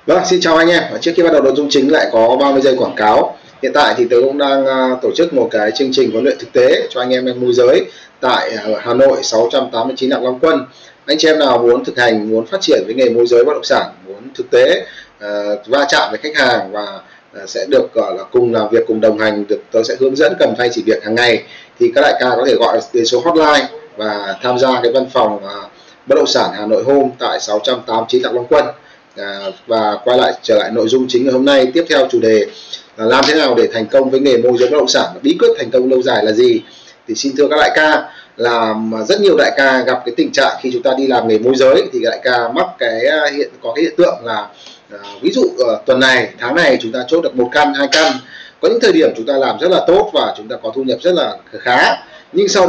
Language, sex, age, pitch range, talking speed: Vietnamese, male, 20-39, 120-190 Hz, 265 wpm